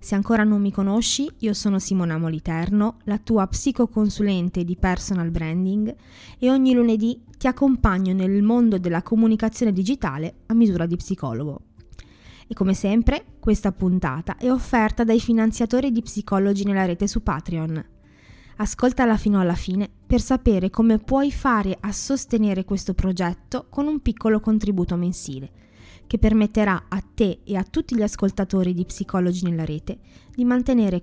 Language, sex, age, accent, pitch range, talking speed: Italian, female, 20-39, native, 180-235 Hz, 150 wpm